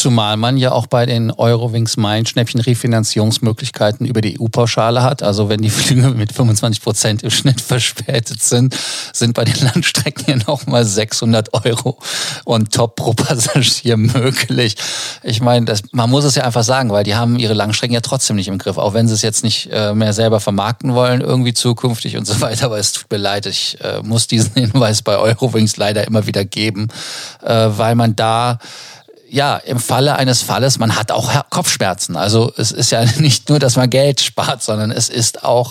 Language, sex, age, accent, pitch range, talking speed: German, male, 40-59, German, 110-130 Hz, 190 wpm